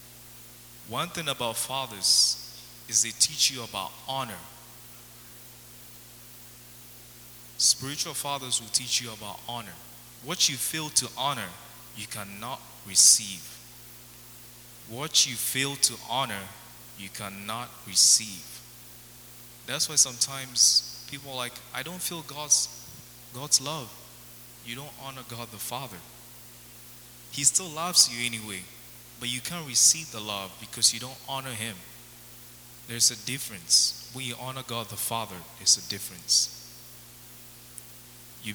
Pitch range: 85-130 Hz